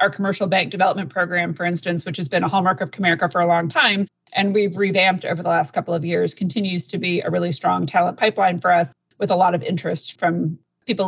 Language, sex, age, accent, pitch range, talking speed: English, female, 30-49, American, 175-200 Hz, 240 wpm